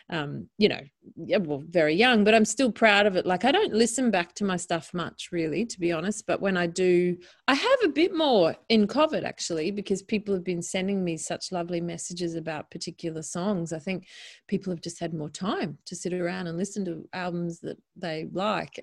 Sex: female